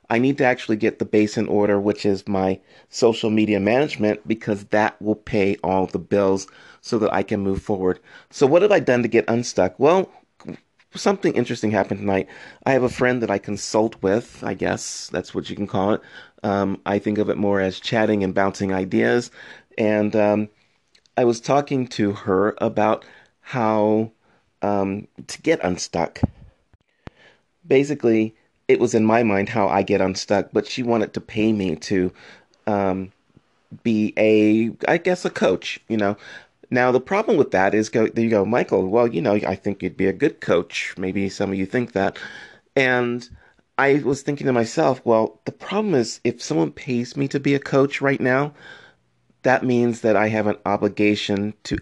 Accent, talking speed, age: American, 190 wpm, 30-49